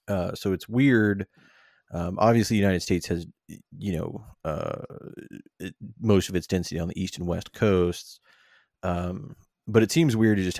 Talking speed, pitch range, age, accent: 175 wpm, 90-105 Hz, 30-49, American